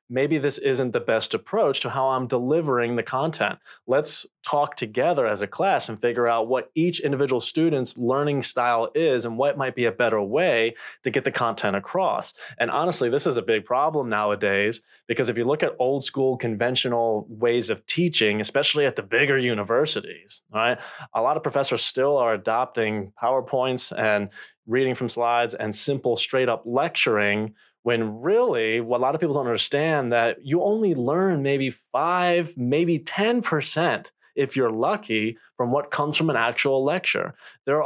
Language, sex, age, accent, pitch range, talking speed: English, male, 30-49, American, 115-150 Hz, 175 wpm